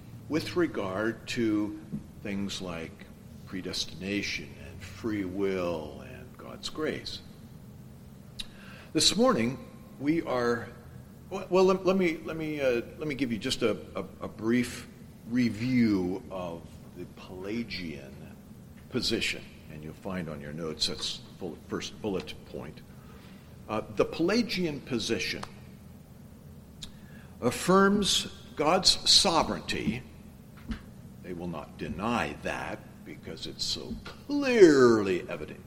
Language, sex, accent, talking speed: English, male, American, 110 wpm